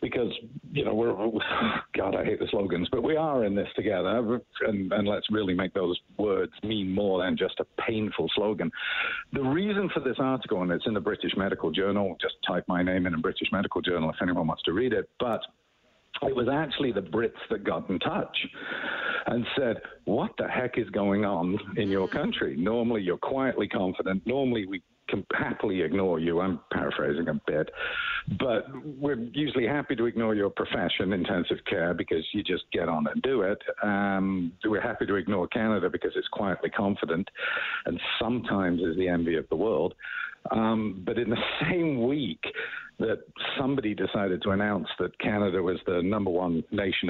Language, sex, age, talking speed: English, male, 50-69, 185 wpm